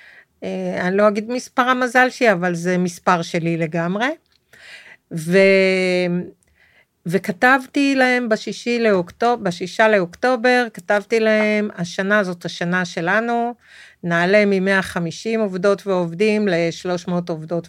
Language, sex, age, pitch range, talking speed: Hebrew, female, 40-59, 170-210 Hz, 100 wpm